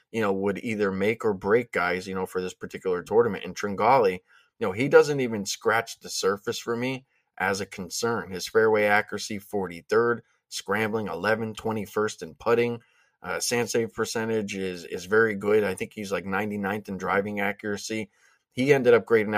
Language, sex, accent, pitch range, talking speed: English, male, American, 100-115 Hz, 175 wpm